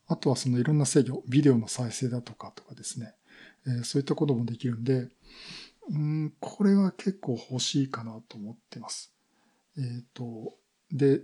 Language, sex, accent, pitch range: Japanese, male, native, 125-175 Hz